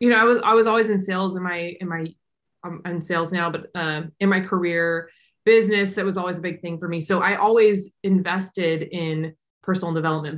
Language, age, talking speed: English, 20-39, 220 wpm